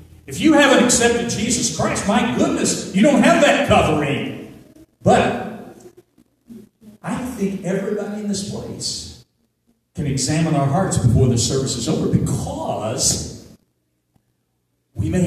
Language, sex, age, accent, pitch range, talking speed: English, male, 50-69, American, 125-195 Hz, 125 wpm